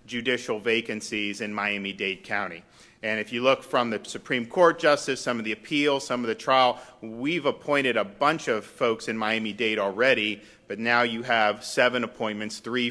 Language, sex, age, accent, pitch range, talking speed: English, male, 40-59, American, 105-120 Hz, 175 wpm